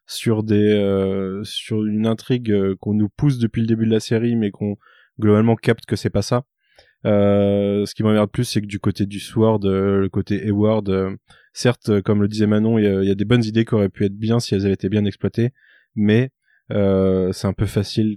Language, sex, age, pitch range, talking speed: French, male, 20-39, 105-120 Hz, 225 wpm